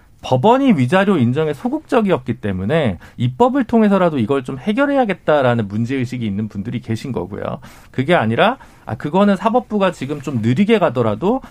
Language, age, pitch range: Korean, 40-59, 120-200 Hz